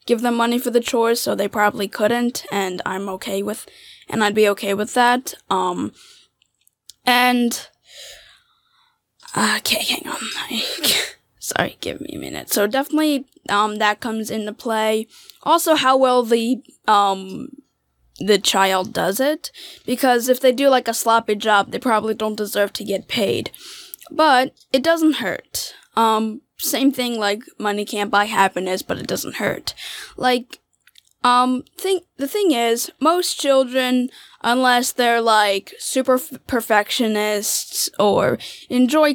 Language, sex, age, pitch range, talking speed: English, female, 10-29, 210-265 Hz, 140 wpm